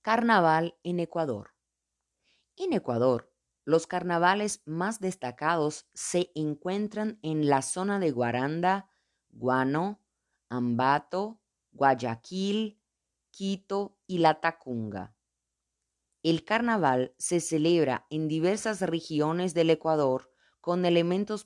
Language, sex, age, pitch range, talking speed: Spanish, female, 30-49, 130-180 Hz, 95 wpm